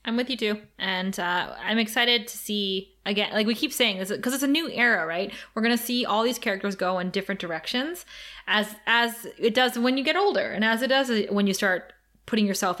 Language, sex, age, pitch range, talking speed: English, female, 20-39, 195-235 Hz, 235 wpm